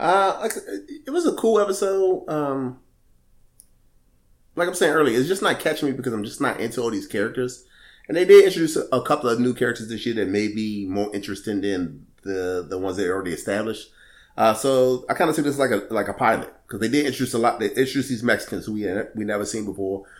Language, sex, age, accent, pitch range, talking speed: English, male, 30-49, American, 100-130 Hz, 225 wpm